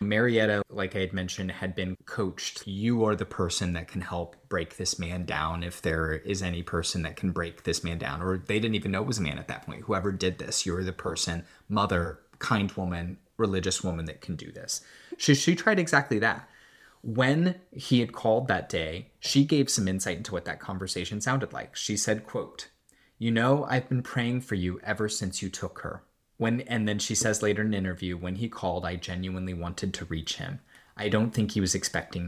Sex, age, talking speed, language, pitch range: male, 20-39, 220 wpm, English, 90-110 Hz